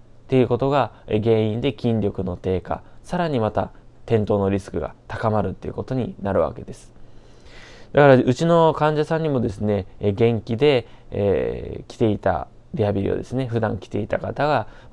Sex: male